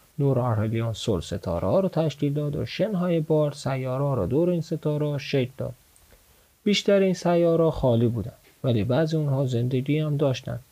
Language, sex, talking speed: Persian, male, 170 wpm